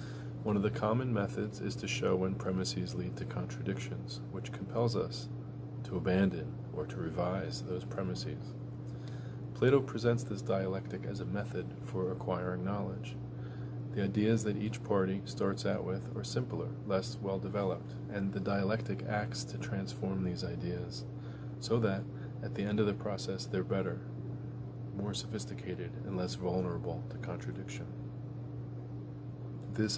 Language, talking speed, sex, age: English, 140 wpm, male, 30-49